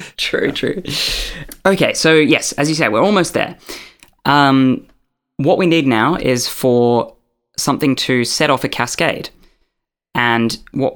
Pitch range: 115-145 Hz